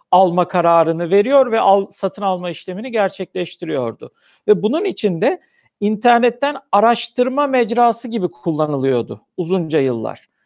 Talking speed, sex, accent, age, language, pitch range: 110 wpm, male, native, 50-69, Turkish, 175-240 Hz